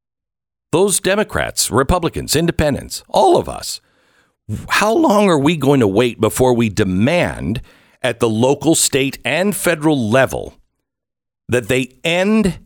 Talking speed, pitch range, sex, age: 130 wpm, 110-165 Hz, male, 60-79